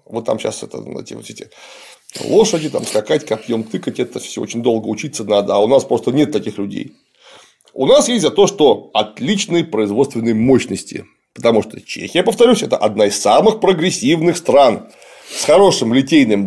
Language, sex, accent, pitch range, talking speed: Russian, male, native, 125-200 Hz, 170 wpm